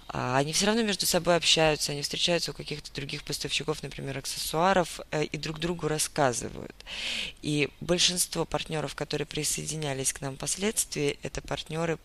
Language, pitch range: Russian, 145-180 Hz